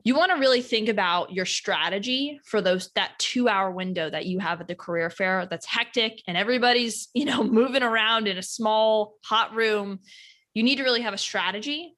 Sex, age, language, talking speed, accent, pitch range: female, 20-39, English, 200 wpm, American, 180-230 Hz